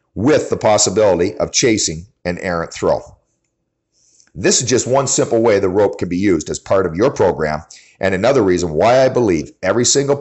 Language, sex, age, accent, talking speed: English, male, 50-69, American, 190 wpm